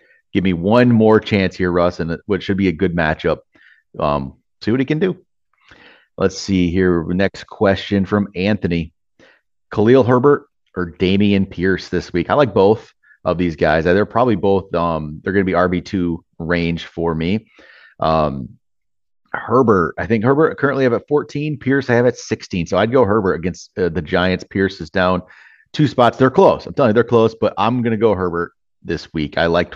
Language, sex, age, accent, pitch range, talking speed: English, male, 30-49, American, 85-110 Hz, 195 wpm